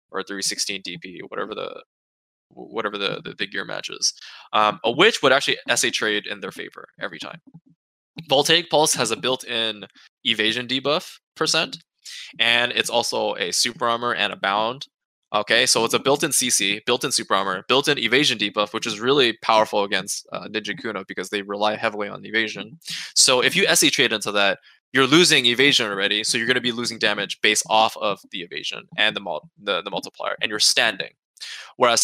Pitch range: 105-130 Hz